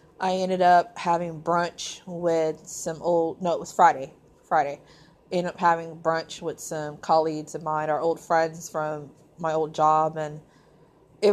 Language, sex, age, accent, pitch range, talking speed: English, female, 20-39, American, 155-175 Hz, 165 wpm